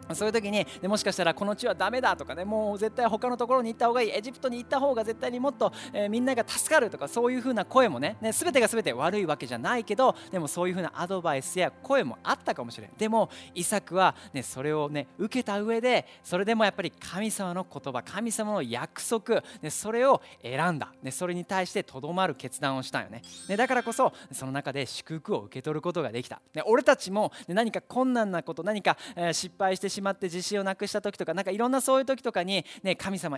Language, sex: Japanese, male